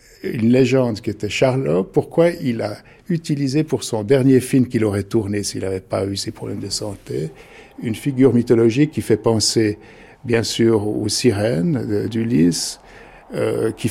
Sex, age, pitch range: male, 50-69, 110-140 Hz